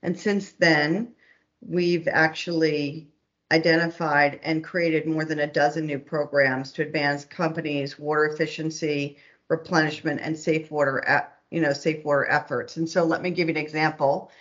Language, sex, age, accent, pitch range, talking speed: English, female, 50-69, American, 150-170 Hz, 150 wpm